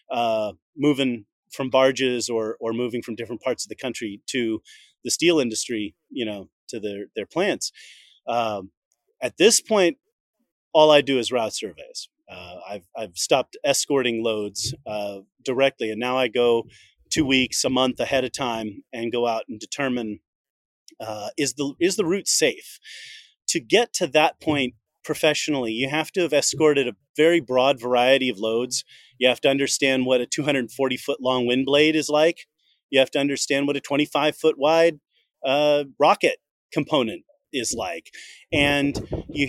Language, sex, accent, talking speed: English, male, American, 165 wpm